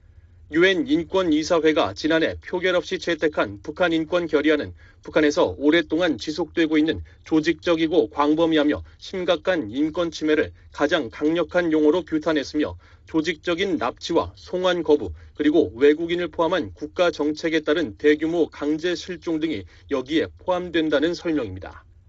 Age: 40-59